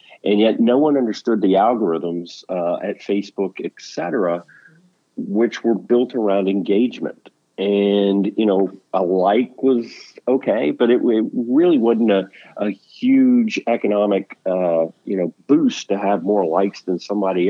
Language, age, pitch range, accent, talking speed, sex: English, 50-69, 90-110 Hz, American, 145 wpm, male